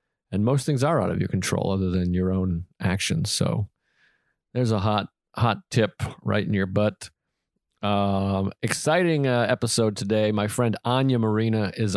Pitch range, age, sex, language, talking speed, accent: 95-115 Hz, 40-59, male, English, 165 wpm, American